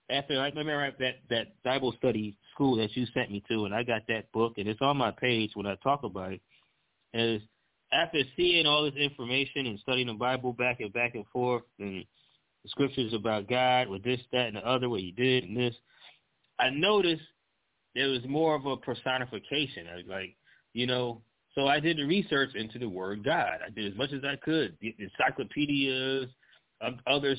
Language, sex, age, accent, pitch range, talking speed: English, male, 20-39, American, 115-140 Hz, 200 wpm